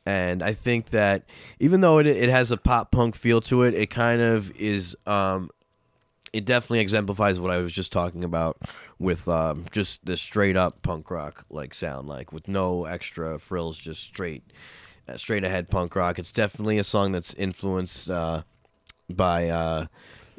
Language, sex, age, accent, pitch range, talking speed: English, male, 20-39, American, 90-110 Hz, 175 wpm